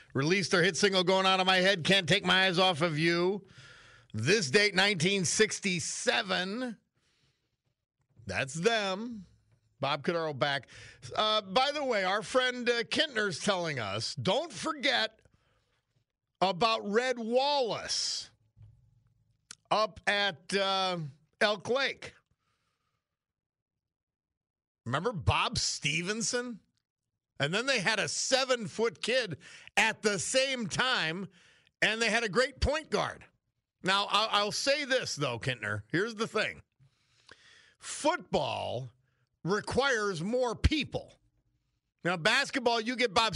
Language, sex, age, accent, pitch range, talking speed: English, male, 50-69, American, 140-220 Hz, 115 wpm